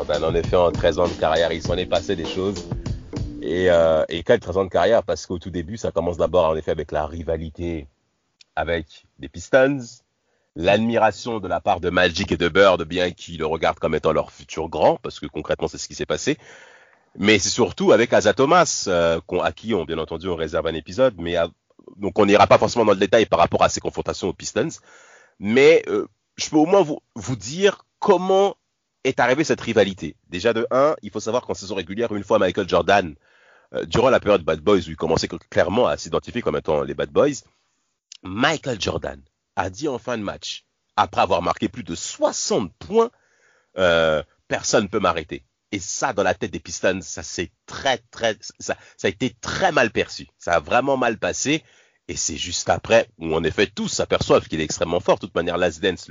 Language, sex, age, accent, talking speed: French, male, 40-59, French, 215 wpm